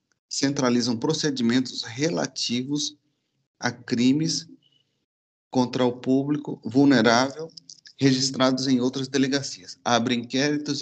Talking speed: 85 wpm